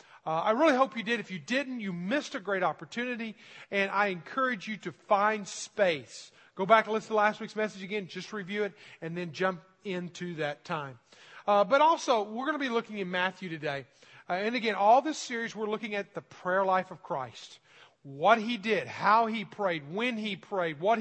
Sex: male